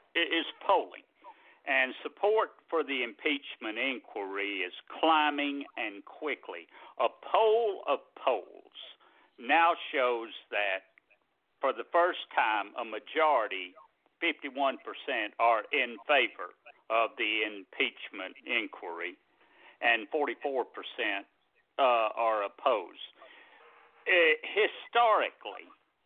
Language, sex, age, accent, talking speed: English, male, 60-79, American, 90 wpm